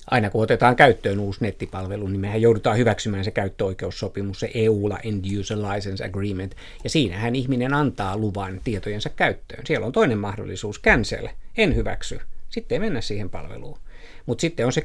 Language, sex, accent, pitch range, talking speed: Finnish, male, native, 105-125 Hz, 160 wpm